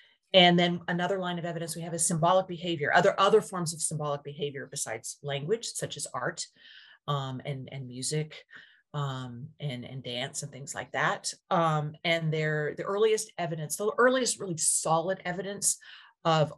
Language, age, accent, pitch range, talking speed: English, 40-59, American, 150-180 Hz, 165 wpm